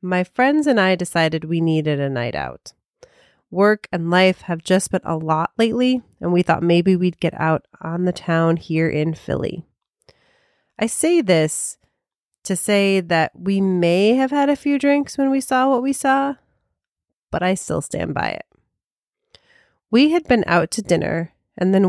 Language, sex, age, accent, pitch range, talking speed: English, female, 30-49, American, 170-255 Hz, 180 wpm